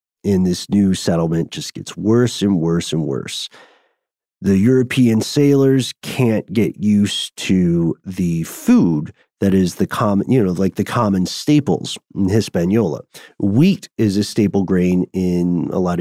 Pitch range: 90-115 Hz